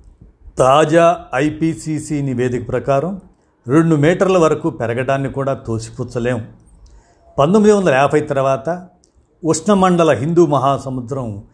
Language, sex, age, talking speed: Telugu, male, 50-69, 90 wpm